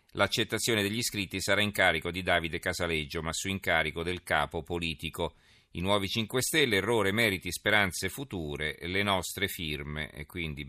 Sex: male